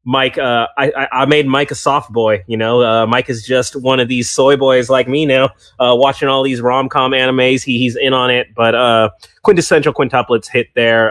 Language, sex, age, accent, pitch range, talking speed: English, male, 30-49, American, 115-155 Hz, 220 wpm